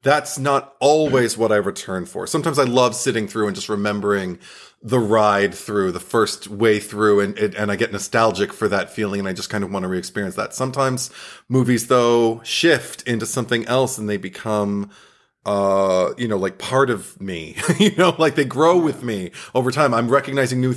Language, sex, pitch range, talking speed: English, male, 105-130 Hz, 195 wpm